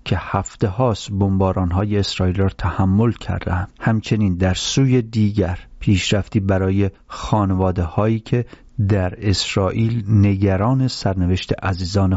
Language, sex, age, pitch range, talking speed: English, male, 40-59, 95-115 Hz, 115 wpm